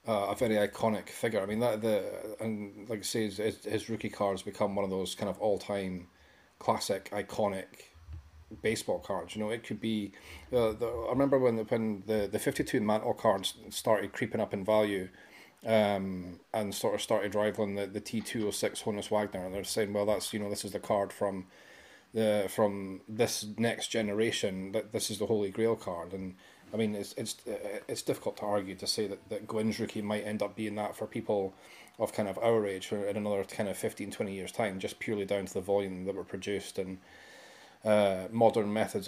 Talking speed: 205 wpm